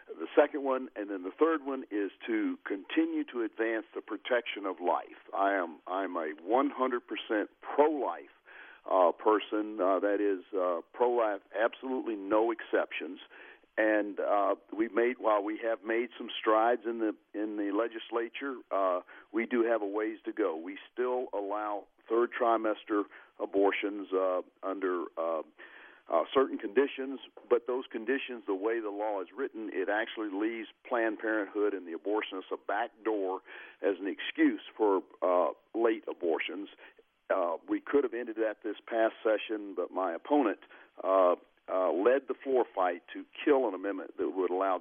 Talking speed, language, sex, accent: 160 wpm, English, male, American